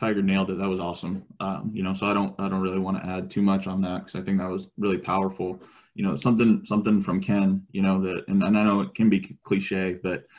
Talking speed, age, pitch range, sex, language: 270 wpm, 20-39, 95-105 Hz, male, English